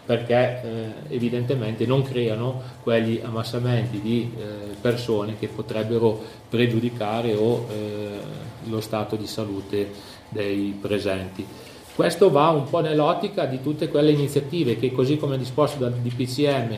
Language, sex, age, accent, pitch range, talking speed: Italian, male, 40-59, native, 110-135 Hz, 130 wpm